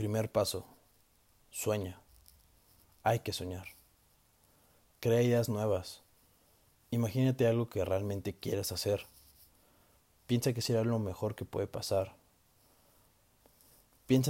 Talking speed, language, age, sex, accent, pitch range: 100 wpm, Spanish, 30-49, male, Mexican, 95-115 Hz